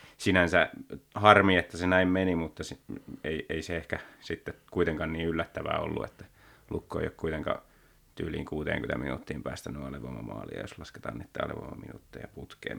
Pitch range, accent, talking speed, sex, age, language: 80-95 Hz, native, 145 wpm, male, 30-49, Finnish